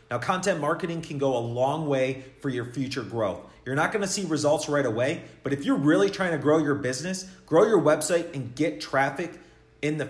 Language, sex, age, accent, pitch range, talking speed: English, male, 30-49, American, 130-165 Hz, 215 wpm